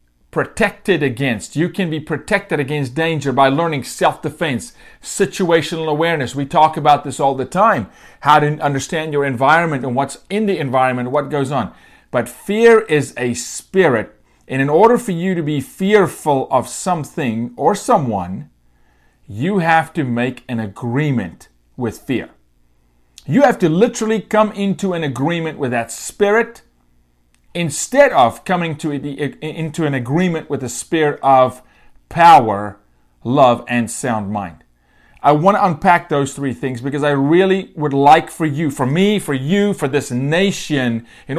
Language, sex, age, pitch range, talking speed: English, male, 40-59, 130-175 Hz, 160 wpm